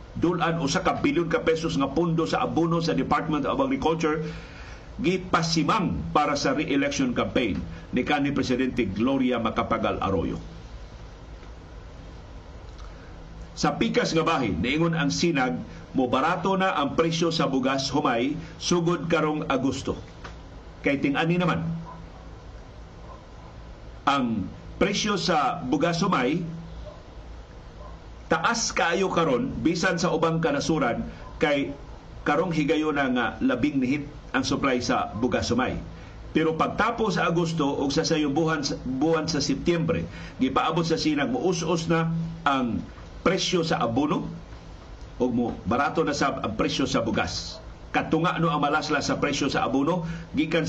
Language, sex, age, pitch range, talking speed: Filipino, male, 50-69, 135-175 Hz, 125 wpm